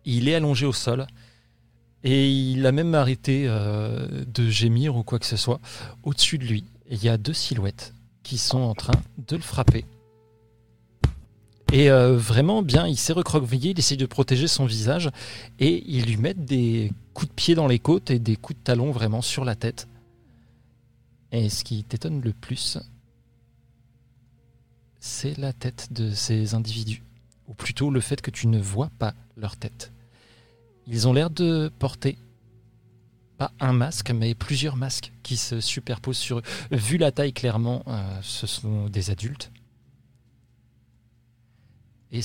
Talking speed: 165 wpm